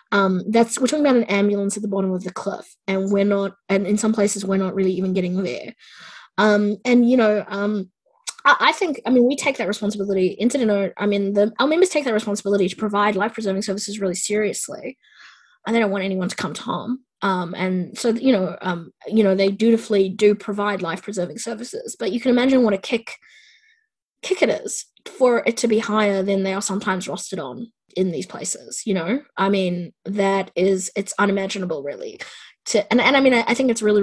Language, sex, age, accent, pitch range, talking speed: English, female, 20-39, Australian, 195-240 Hz, 215 wpm